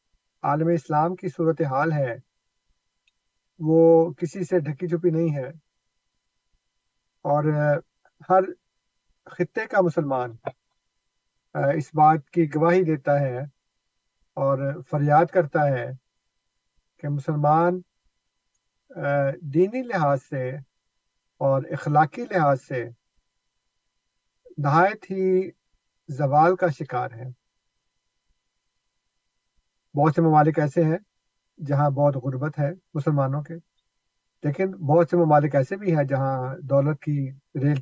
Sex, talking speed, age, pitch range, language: male, 100 wpm, 50-69, 130-165 Hz, Urdu